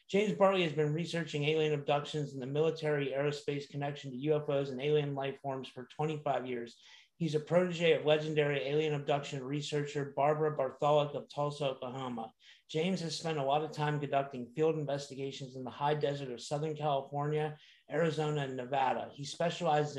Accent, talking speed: American, 170 wpm